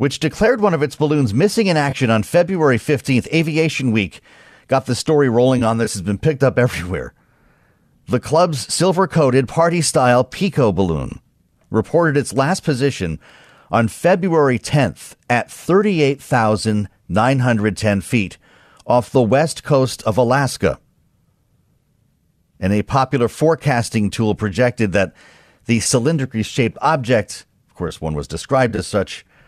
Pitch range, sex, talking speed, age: 100-140 Hz, male, 130 wpm, 40-59